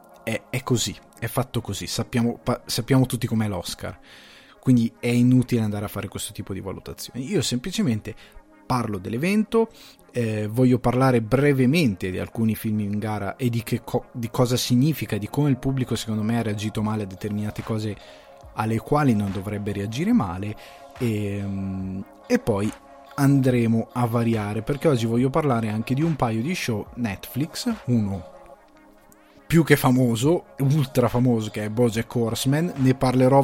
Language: Italian